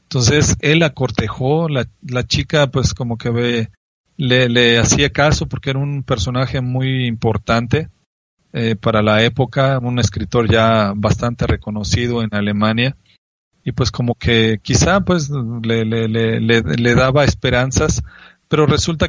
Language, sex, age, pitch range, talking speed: Spanish, male, 40-59, 115-140 Hz, 150 wpm